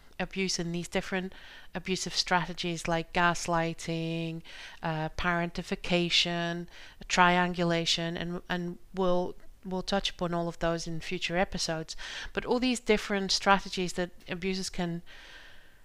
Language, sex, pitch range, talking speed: English, female, 175-195 Hz, 115 wpm